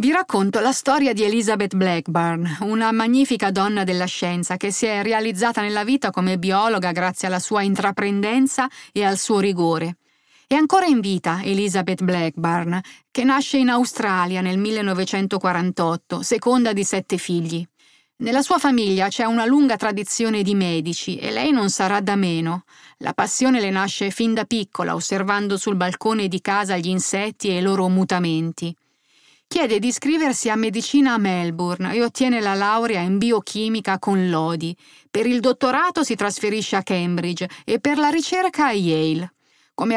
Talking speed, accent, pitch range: 160 wpm, native, 185-230 Hz